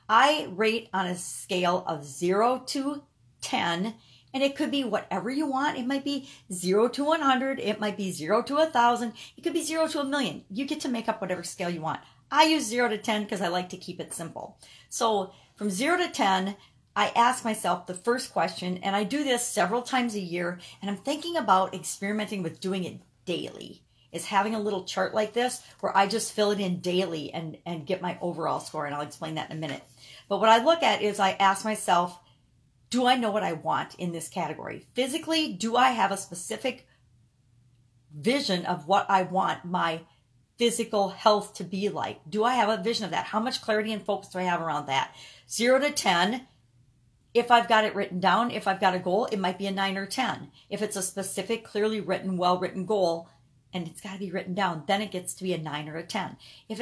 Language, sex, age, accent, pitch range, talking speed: English, female, 40-59, American, 175-235 Hz, 220 wpm